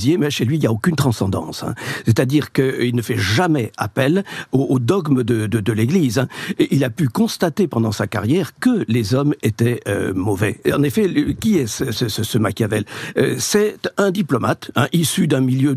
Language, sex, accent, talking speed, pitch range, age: French, male, French, 210 wpm, 120-160 Hz, 50-69